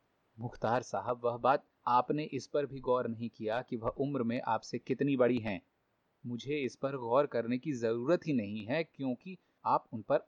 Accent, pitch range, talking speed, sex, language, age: native, 115-135 Hz, 195 wpm, male, Hindi, 30-49